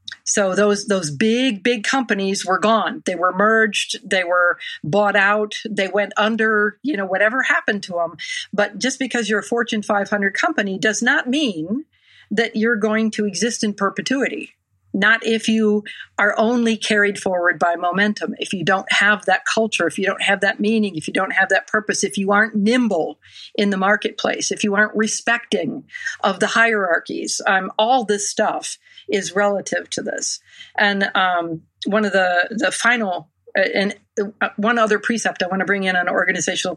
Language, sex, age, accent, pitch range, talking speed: English, female, 50-69, American, 195-220 Hz, 185 wpm